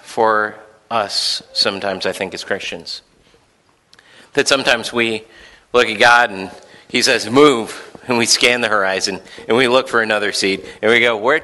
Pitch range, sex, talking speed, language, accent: 125-180 Hz, male, 170 wpm, English, American